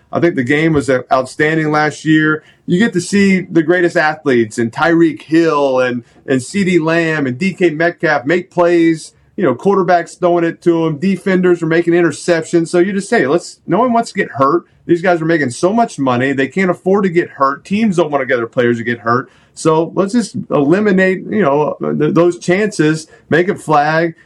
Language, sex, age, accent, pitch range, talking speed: English, male, 40-59, American, 155-185 Hz, 205 wpm